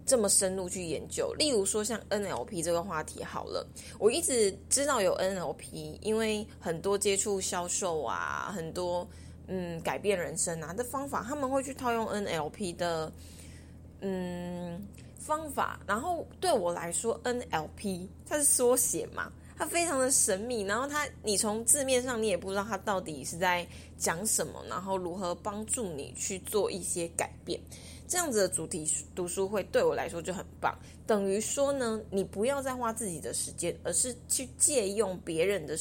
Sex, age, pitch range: female, 20-39, 180-265 Hz